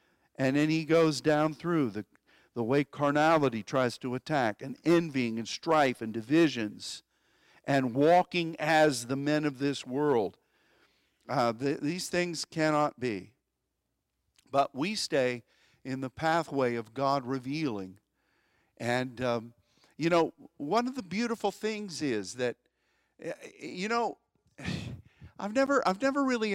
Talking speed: 135 wpm